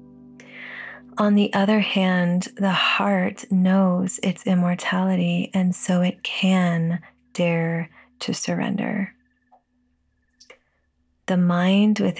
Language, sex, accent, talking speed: English, female, American, 95 wpm